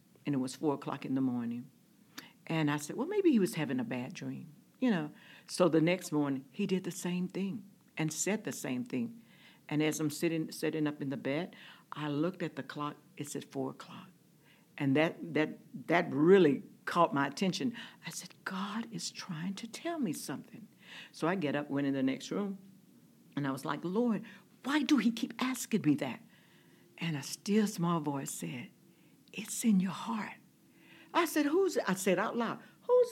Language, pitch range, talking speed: English, 145-220 Hz, 200 wpm